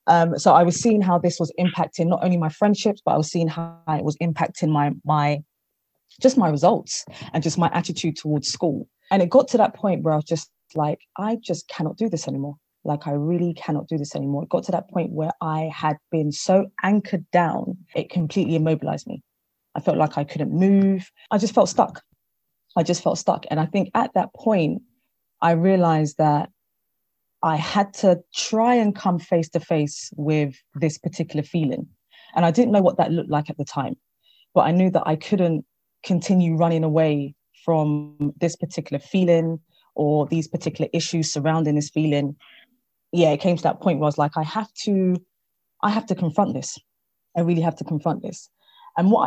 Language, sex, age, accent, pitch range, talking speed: English, female, 20-39, British, 155-185 Hz, 200 wpm